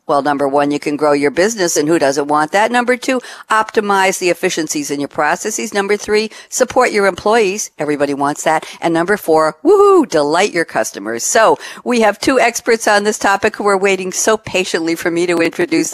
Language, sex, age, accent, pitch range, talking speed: English, female, 60-79, American, 145-200 Hz, 200 wpm